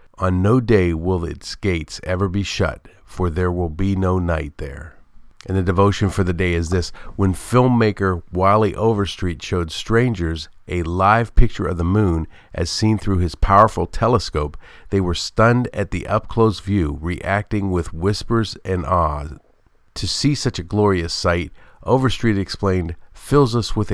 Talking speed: 165 wpm